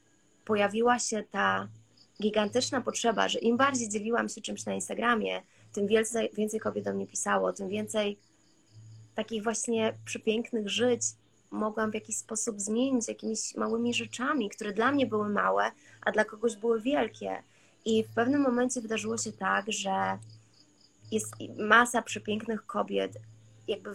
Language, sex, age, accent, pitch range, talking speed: Polish, female, 20-39, native, 195-235 Hz, 145 wpm